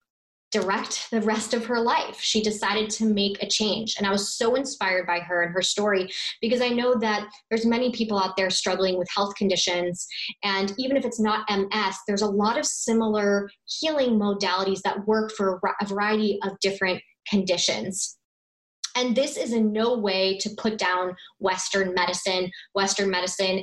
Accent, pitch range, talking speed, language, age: American, 185-215 Hz, 175 wpm, English, 20-39